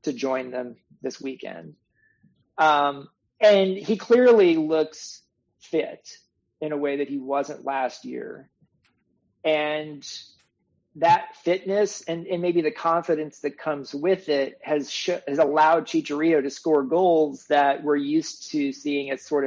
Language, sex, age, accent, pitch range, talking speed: English, male, 40-59, American, 135-165 Hz, 140 wpm